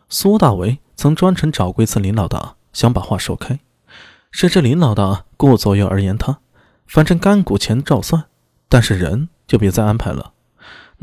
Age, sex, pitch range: 20-39, male, 105-155 Hz